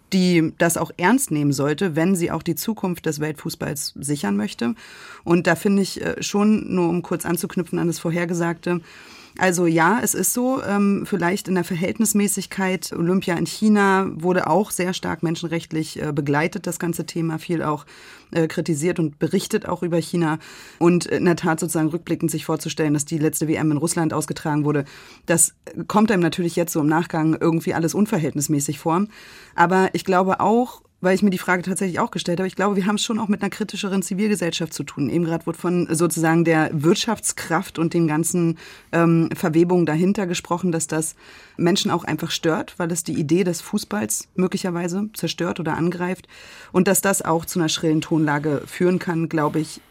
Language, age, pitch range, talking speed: German, 30-49, 165-190 Hz, 185 wpm